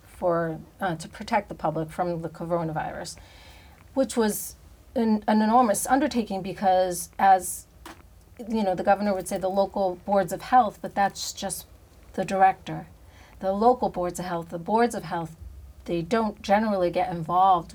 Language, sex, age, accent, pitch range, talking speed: English, female, 40-59, American, 170-195 Hz, 160 wpm